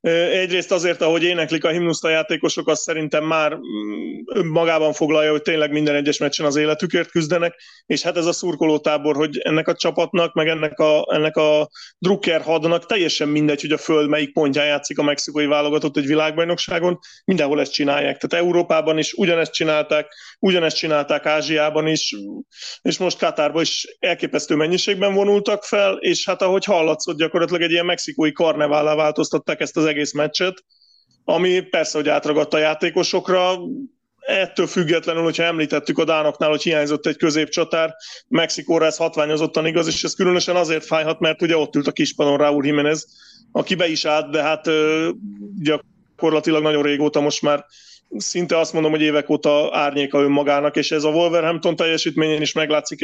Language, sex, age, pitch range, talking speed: Hungarian, male, 30-49, 150-170 Hz, 160 wpm